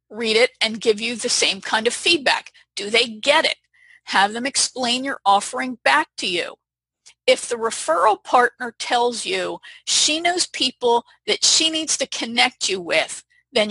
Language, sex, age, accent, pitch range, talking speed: English, female, 50-69, American, 210-285 Hz, 170 wpm